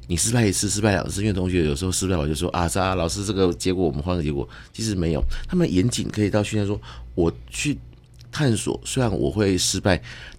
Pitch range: 75-100 Hz